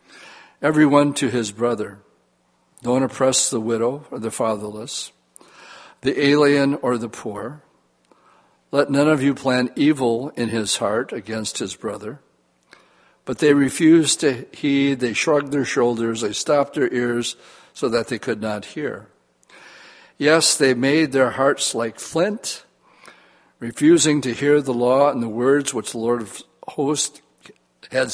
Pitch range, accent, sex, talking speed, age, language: 115-140 Hz, American, male, 145 wpm, 60-79, English